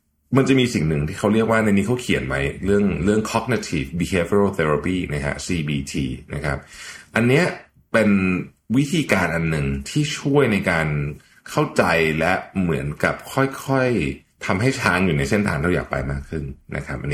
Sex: male